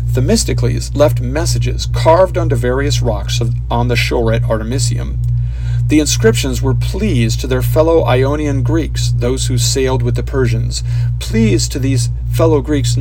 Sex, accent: male, American